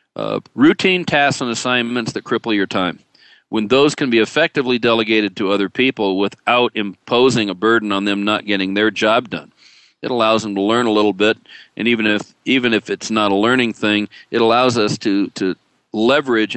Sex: male